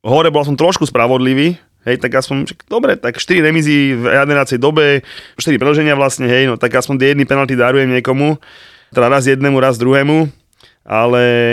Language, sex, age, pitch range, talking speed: Slovak, male, 20-39, 110-145 Hz, 170 wpm